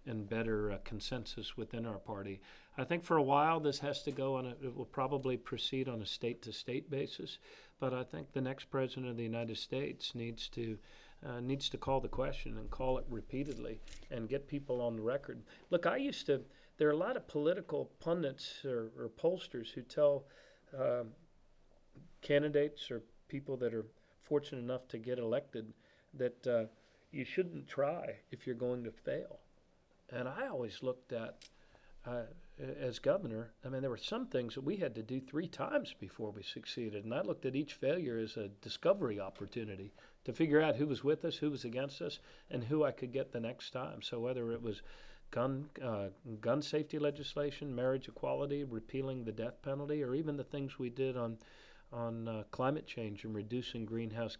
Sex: male